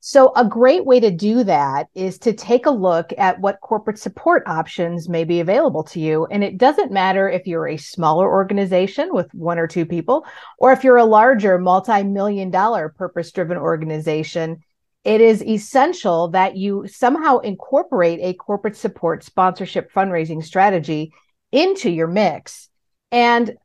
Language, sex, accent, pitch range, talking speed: English, female, American, 180-230 Hz, 155 wpm